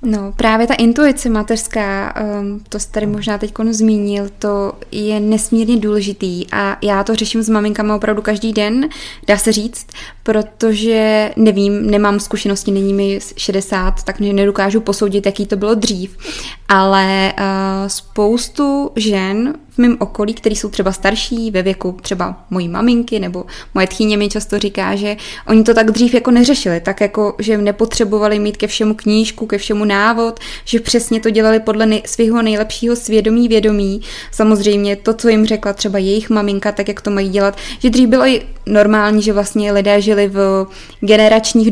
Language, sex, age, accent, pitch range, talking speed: Czech, female, 20-39, native, 200-220 Hz, 165 wpm